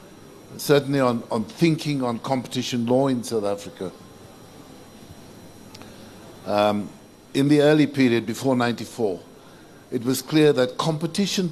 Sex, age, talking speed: male, 60-79, 115 wpm